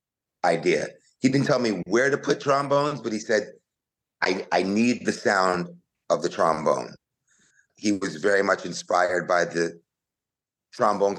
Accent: American